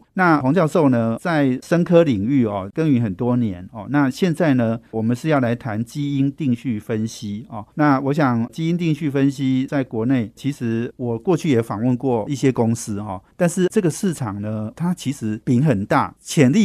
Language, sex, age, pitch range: Chinese, male, 50-69, 115-145 Hz